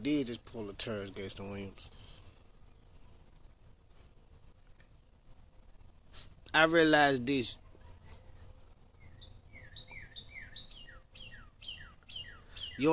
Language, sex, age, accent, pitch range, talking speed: English, male, 20-39, American, 100-150 Hz, 55 wpm